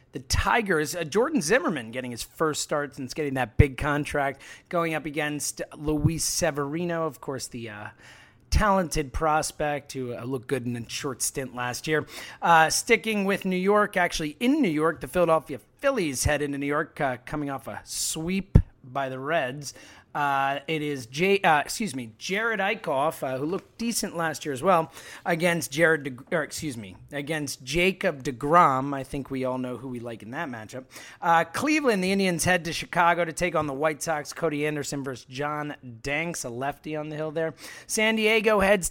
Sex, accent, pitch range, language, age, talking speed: male, American, 135-180 Hz, English, 30-49, 190 wpm